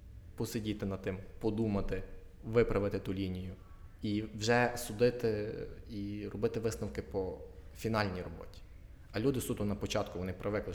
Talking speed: 130 wpm